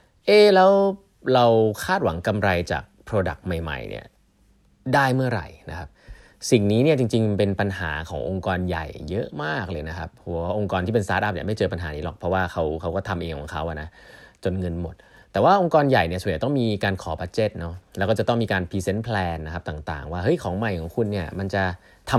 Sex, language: male, Thai